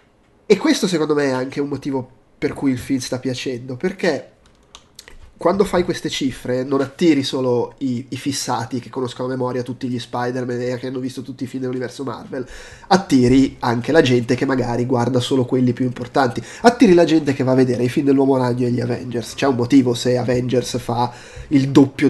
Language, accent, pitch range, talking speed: Italian, native, 125-165 Hz, 200 wpm